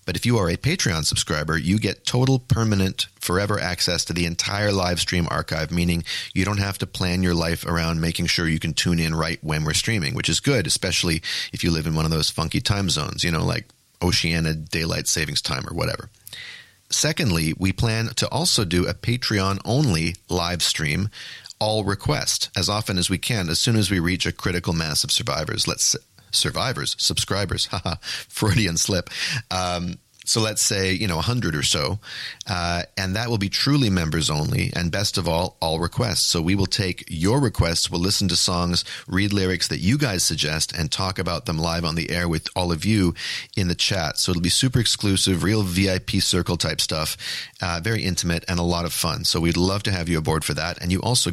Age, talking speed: 40-59, 210 wpm